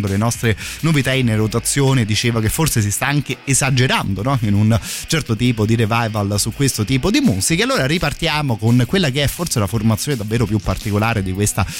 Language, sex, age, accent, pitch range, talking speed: Italian, male, 30-49, native, 105-130 Hz, 195 wpm